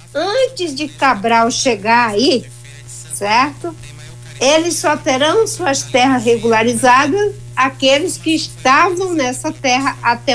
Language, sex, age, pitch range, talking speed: Portuguese, female, 60-79, 205-305 Hz, 105 wpm